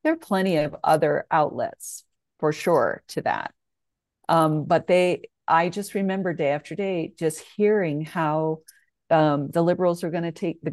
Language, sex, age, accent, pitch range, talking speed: English, female, 50-69, American, 160-190 Hz, 170 wpm